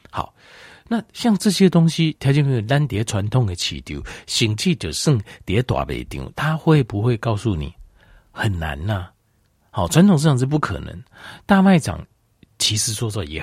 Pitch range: 85-135 Hz